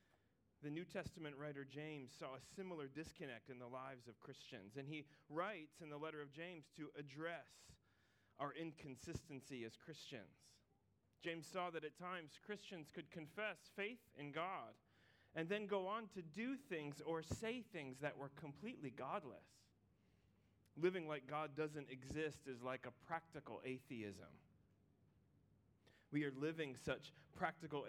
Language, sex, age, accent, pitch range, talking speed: English, male, 30-49, American, 120-155 Hz, 145 wpm